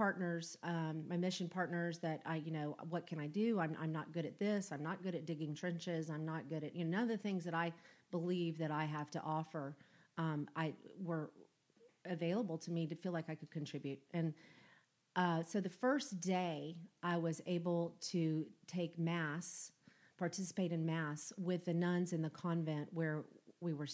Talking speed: 200 wpm